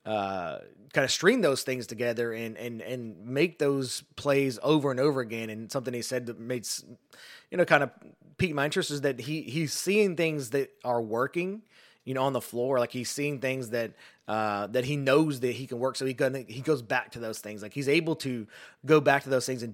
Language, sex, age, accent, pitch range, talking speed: English, male, 30-49, American, 115-140 Hz, 235 wpm